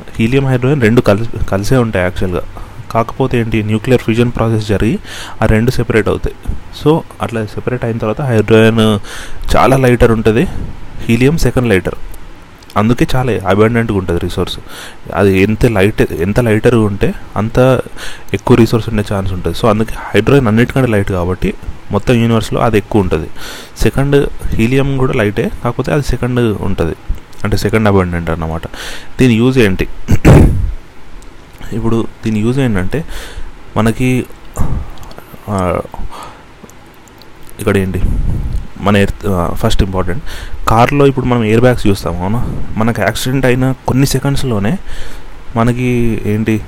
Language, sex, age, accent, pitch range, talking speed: Telugu, male, 30-49, native, 95-120 Hz, 120 wpm